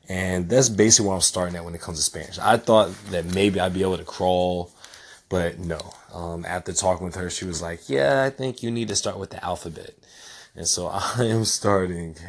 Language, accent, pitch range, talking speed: English, American, 85-100 Hz, 225 wpm